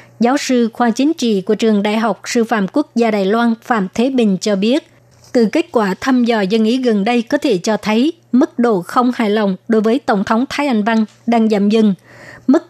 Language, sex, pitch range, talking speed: Vietnamese, male, 215-245 Hz, 230 wpm